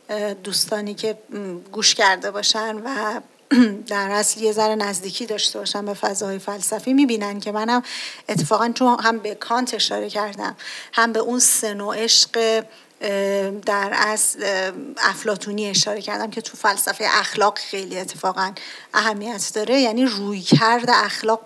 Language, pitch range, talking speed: Persian, 200-230 Hz, 135 wpm